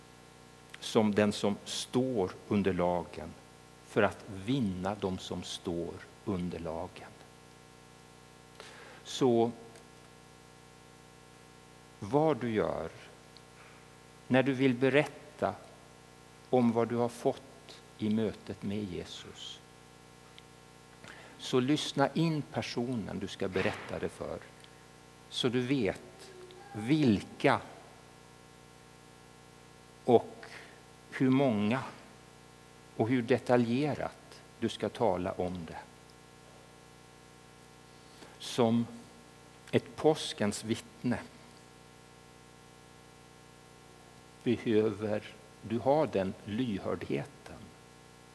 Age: 60-79